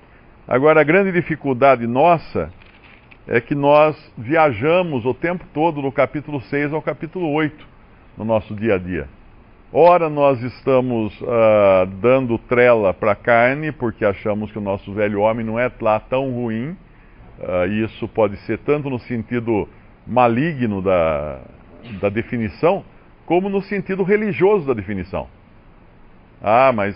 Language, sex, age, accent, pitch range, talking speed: Portuguese, male, 50-69, Brazilian, 105-150 Hz, 140 wpm